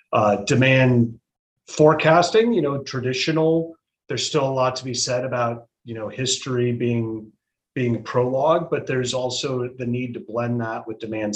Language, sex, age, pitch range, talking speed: English, male, 30-49, 115-140 Hz, 160 wpm